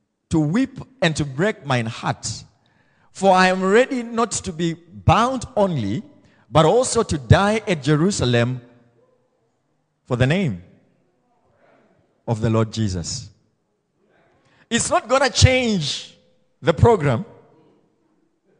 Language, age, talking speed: English, 50-69, 115 wpm